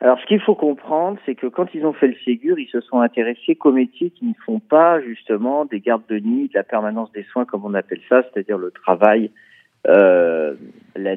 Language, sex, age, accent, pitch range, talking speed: French, male, 50-69, French, 115-165 Hz, 225 wpm